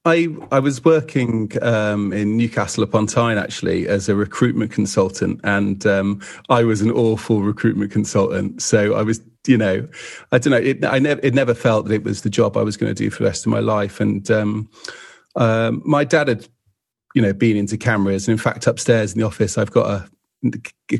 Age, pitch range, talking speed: 30-49, 105-120 Hz, 205 wpm